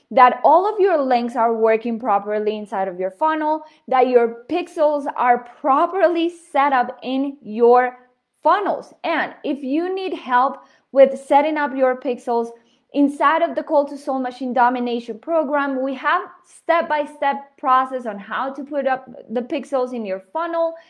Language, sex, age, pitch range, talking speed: English, female, 20-39, 235-290 Hz, 160 wpm